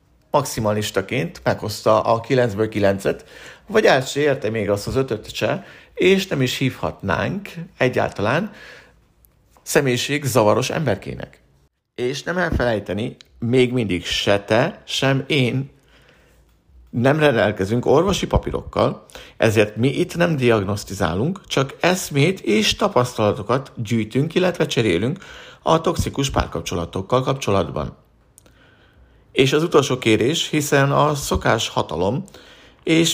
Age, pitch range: 50-69, 105-140 Hz